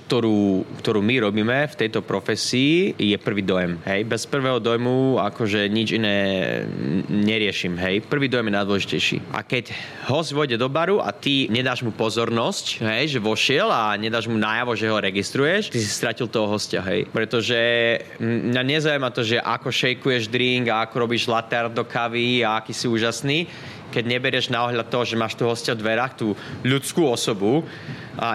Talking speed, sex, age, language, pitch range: 175 wpm, male, 20-39, Slovak, 110-130 Hz